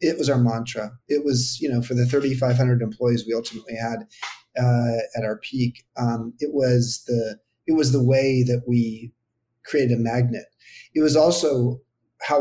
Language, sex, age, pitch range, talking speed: English, male, 40-59, 115-135 Hz, 175 wpm